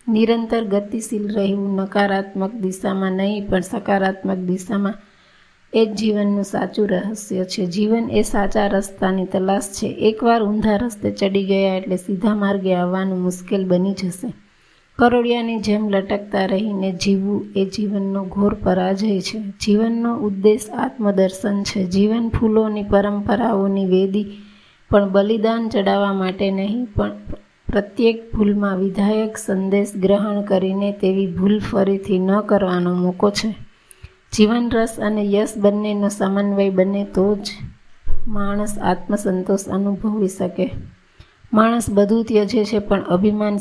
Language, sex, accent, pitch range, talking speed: Gujarati, female, native, 195-215 Hz, 110 wpm